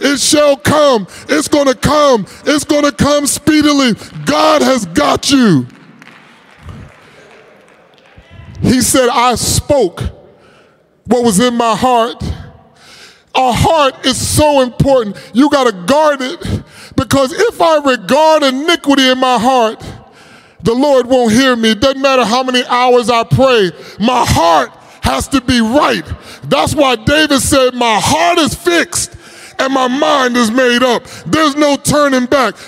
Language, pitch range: English, 230-285 Hz